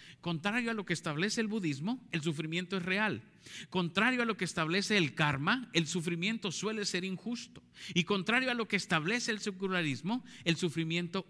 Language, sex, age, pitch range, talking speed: Spanish, male, 50-69, 130-190 Hz, 175 wpm